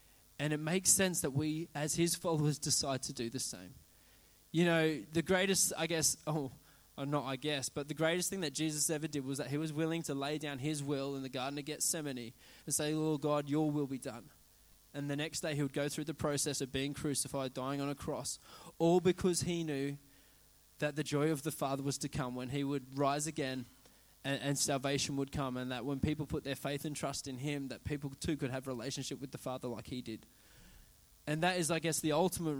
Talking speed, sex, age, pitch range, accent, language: 230 wpm, male, 20-39, 135-155 Hz, Australian, English